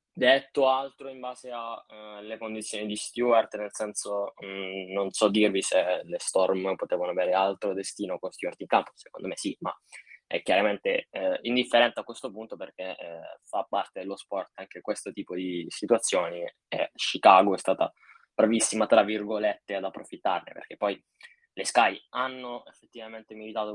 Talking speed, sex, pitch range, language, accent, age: 165 wpm, male, 105-125 Hz, Italian, native, 10-29